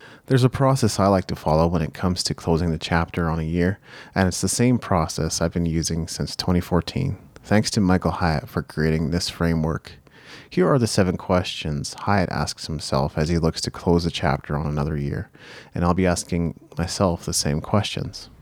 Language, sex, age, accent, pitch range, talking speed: English, male, 30-49, American, 80-100 Hz, 200 wpm